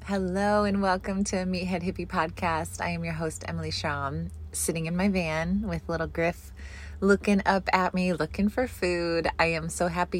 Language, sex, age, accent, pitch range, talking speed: English, female, 20-39, American, 155-185 Hz, 180 wpm